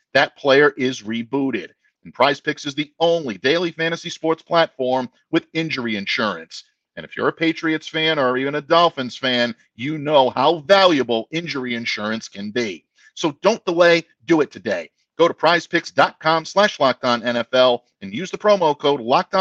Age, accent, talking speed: 50-69, American, 160 wpm